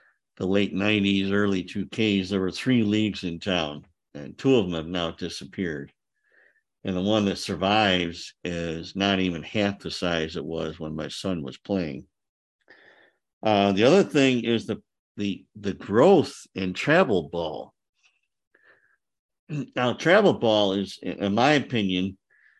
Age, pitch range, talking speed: 50-69, 90-115 Hz, 150 wpm